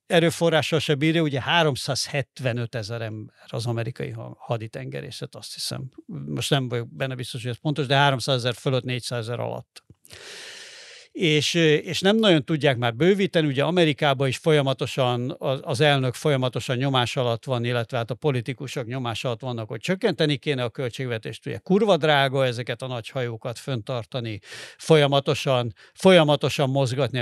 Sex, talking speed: male, 145 wpm